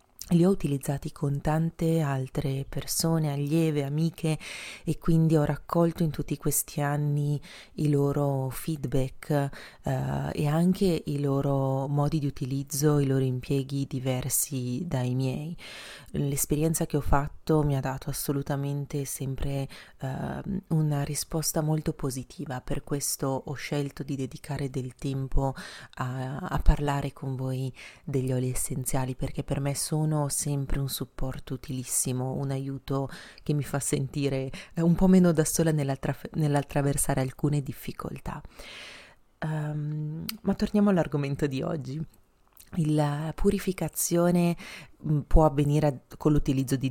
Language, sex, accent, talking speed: Italian, female, native, 125 wpm